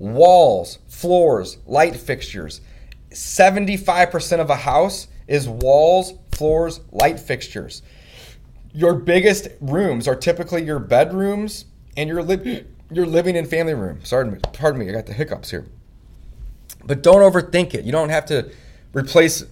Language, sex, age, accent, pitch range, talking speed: English, male, 30-49, American, 120-165 Hz, 140 wpm